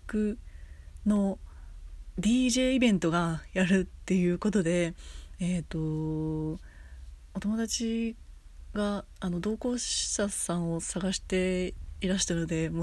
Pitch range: 165-220 Hz